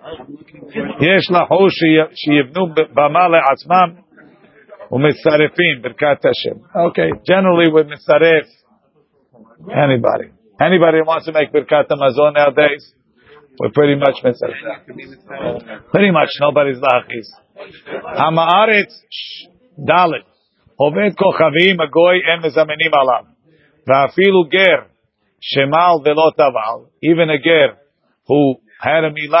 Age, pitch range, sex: 50-69, 145-170 Hz, male